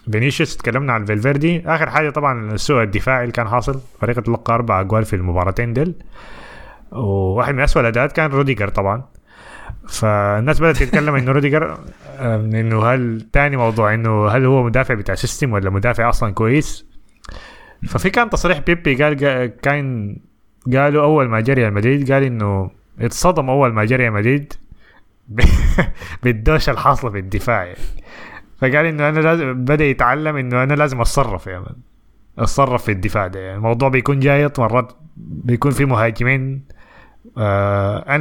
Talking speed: 145 wpm